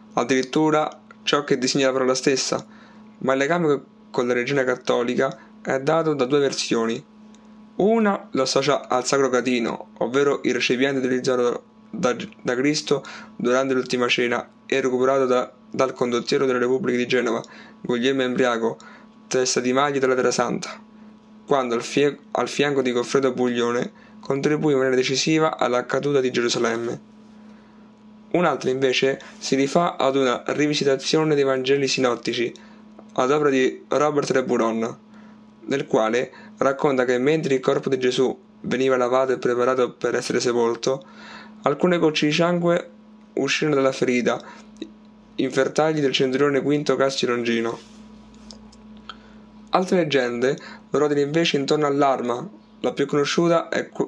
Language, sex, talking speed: Italian, male, 135 wpm